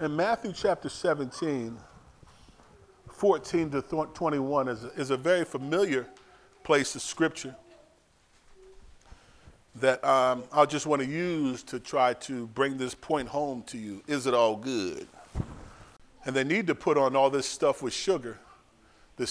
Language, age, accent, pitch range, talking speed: English, 40-59, American, 130-195 Hz, 150 wpm